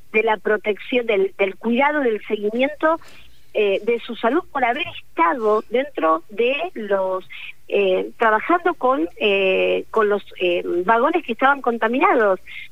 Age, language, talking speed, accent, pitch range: 50-69, Spanish, 135 wpm, Argentinian, 200-285 Hz